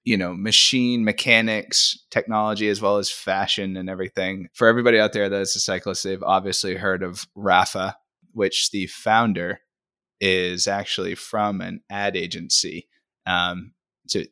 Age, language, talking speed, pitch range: 20-39, English, 145 wpm, 95-115 Hz